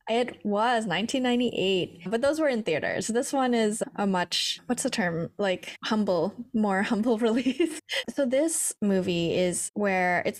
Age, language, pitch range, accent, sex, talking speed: 10-29, English, 180-220 Hz, American, female, 155 wpm